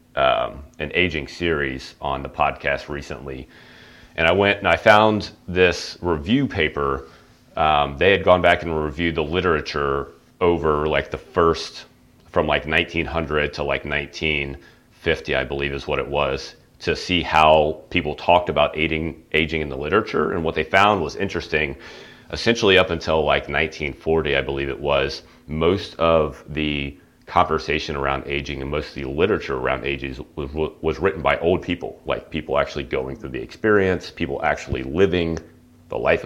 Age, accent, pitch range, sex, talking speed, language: 30-49, American, 70-85 Hz, male, 160 wpm, English